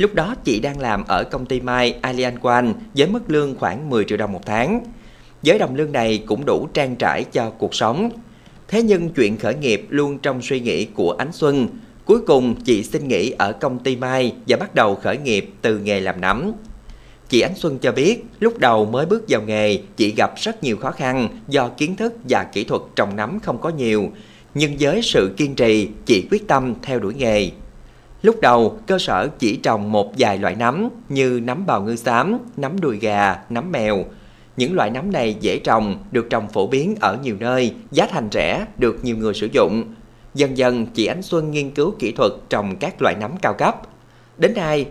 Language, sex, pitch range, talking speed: Vietnamese, male, 115-160 Hz, 210 wpm